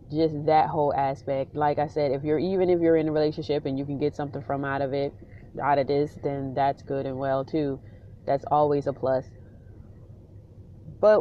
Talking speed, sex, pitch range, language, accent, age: 205 wpm, female, 135-155 Hz, English, American, 30-49